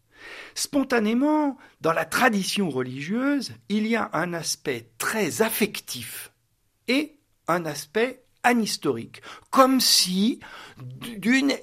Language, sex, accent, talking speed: French, male, French, 100 wpm